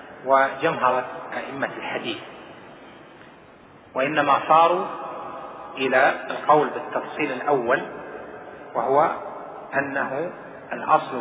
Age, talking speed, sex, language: 30-49, 65 wpm, male, Arabic